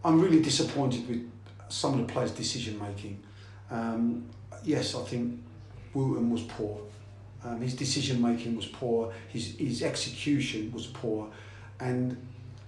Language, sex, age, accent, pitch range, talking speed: English, male, 40-59, British, 110-145 Hz, 130 wpm